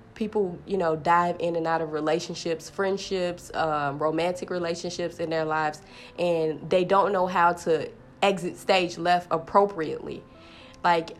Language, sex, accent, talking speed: English, female, American, 145 wpm